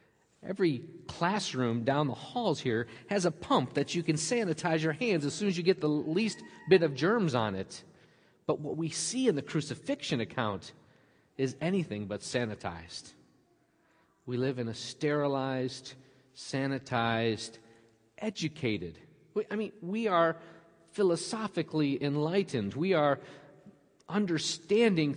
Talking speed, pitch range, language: 130 wpm, 130-165 Hz, English